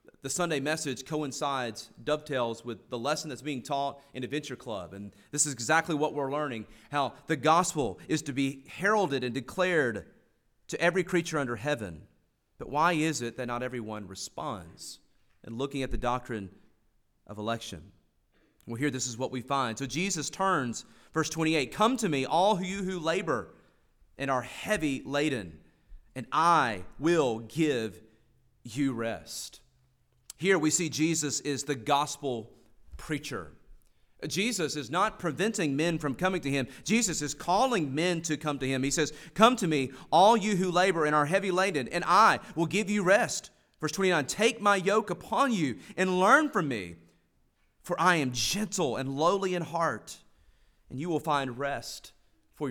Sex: male